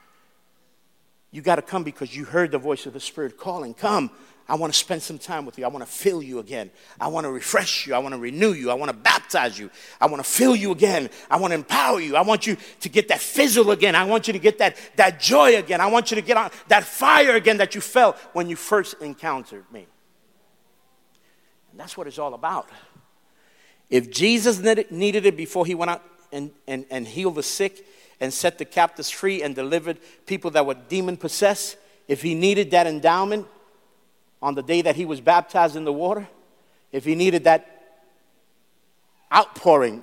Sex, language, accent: male, English, American